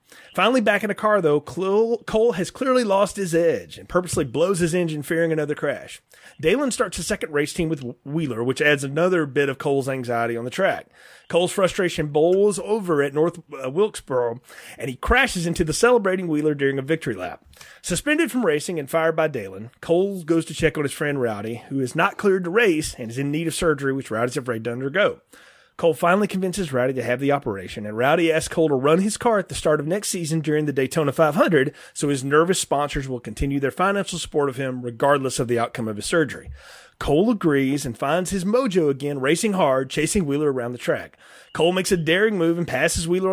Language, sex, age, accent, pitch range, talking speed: English, male, 30-49, American, 135-180 Hz, 215 wpm